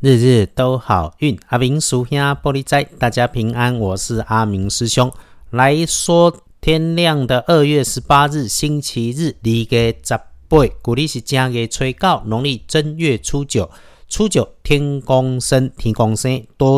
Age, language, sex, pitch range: 50-69, Chinese, male, 105-135 Hz